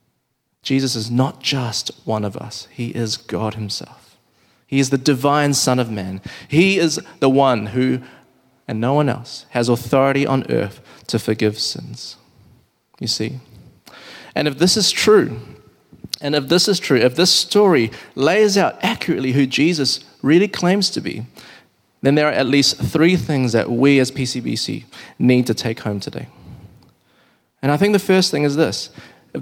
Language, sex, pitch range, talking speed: English, male, 115-150 Hz, 170 wpm